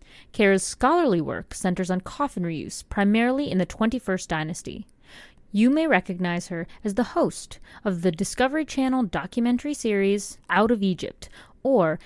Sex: female